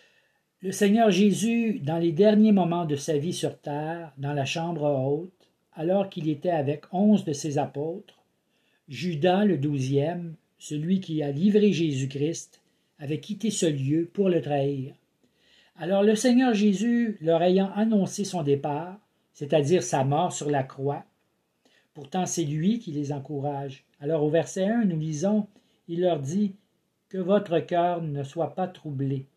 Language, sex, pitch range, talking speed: French, male, 150-190 Hz, 155 wpm